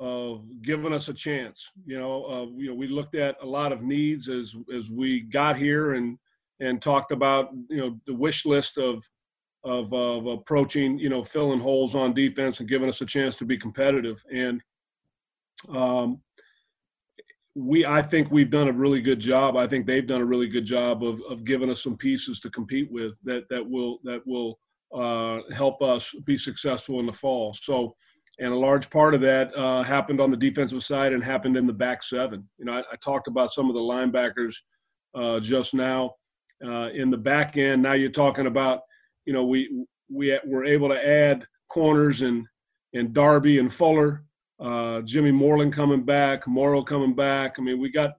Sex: male